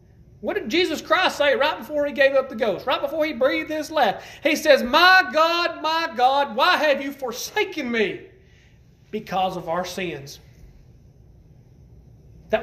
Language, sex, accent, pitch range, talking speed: English, male, American, 180-265 Hz, 160 wpm